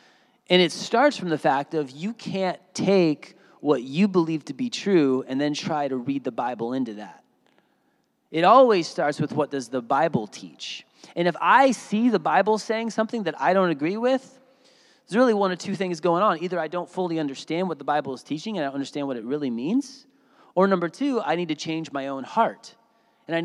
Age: 30-49